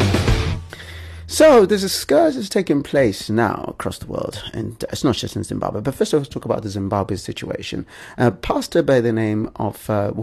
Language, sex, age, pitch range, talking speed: English, male, 30-49, 100-120 Hz, 205 wpm